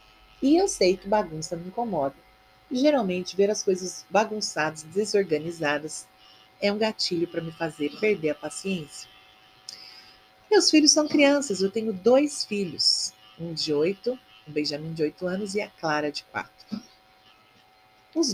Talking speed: 145 wpm